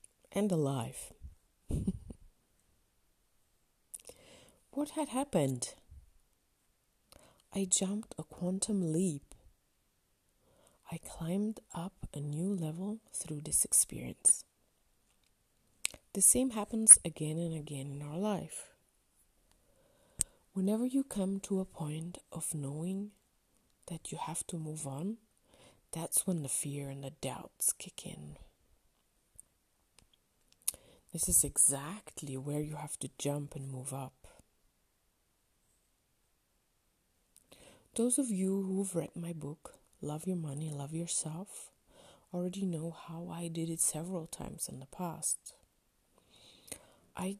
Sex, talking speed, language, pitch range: female, 110 wpm, English, 140-185 Hz